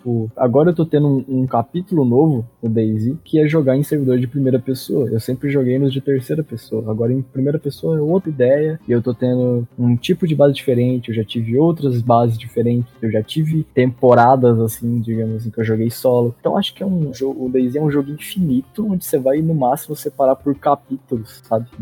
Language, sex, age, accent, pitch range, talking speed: Portuguese, male, 20-39, Brazilian, 120-145 Hz, 225 wpm